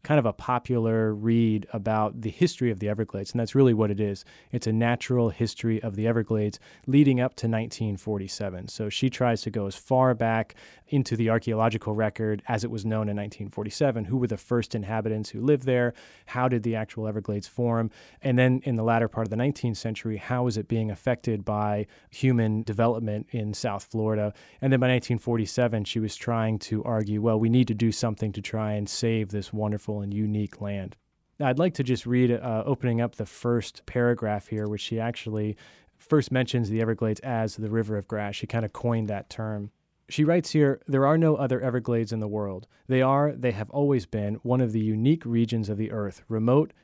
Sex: male